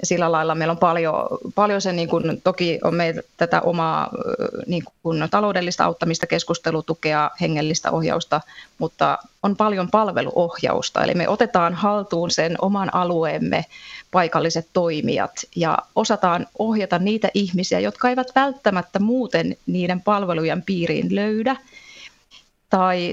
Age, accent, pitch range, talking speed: 30-49, native, 175-225 Hz, 120 wpm